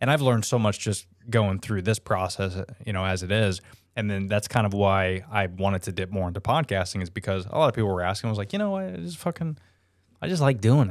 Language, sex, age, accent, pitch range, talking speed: English, male, 20-39, American, 95-110 Hz, 265 wpm